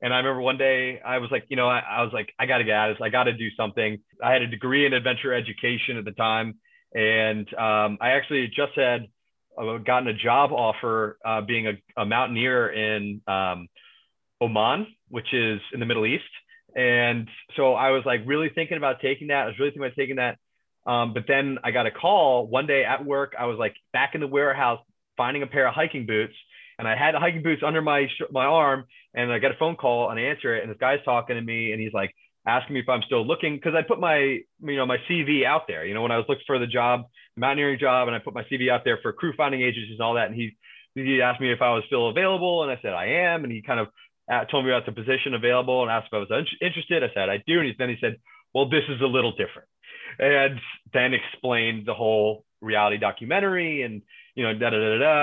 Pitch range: 115-140 Hz